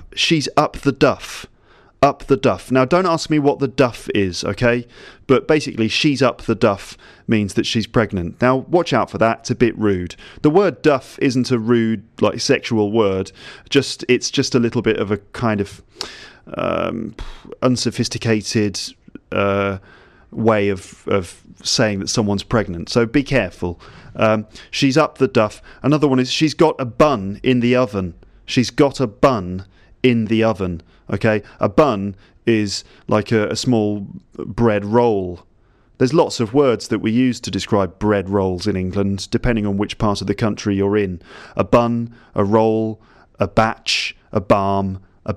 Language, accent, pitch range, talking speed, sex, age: English, British, 100-125 Hz, 170 wpm, male, 30-49